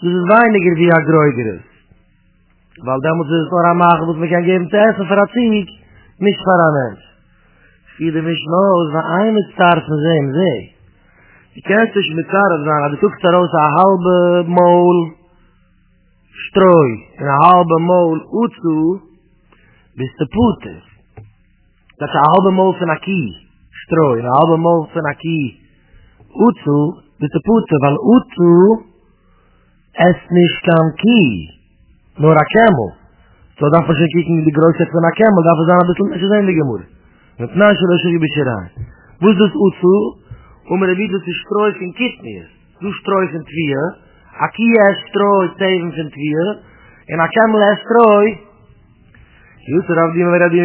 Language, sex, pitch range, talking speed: English, male, 150-195 Hz, 75 wpm